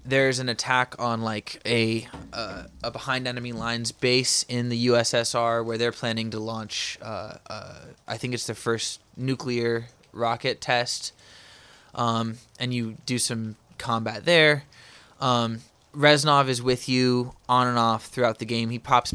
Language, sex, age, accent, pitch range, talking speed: English, male, 20-39, American, 115-135 Hz, 155 wpm